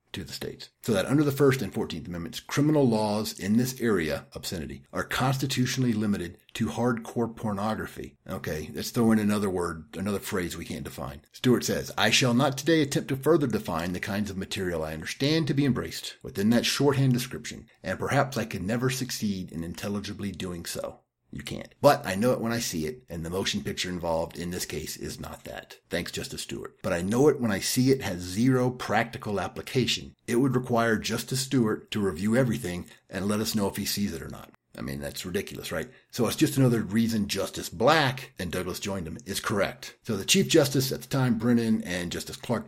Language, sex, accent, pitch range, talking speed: English, male, American, 95-130 Hz, 210 wpm